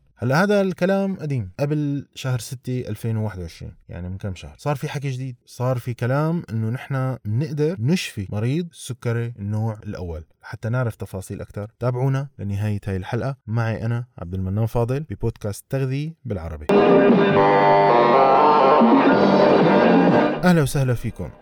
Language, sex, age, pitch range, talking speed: Arabic, male, 20-39, 105-140 Hz, 125 wpm